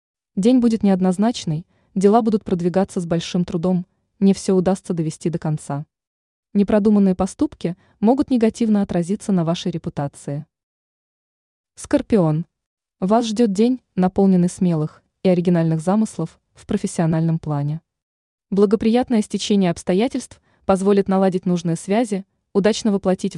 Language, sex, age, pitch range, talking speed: Russian, female, 20-39, 170-220 Hz, 115 wpm